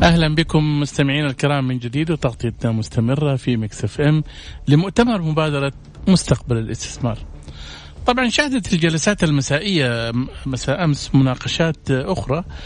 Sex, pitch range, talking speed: male, 115-145 Hz, 110 wpm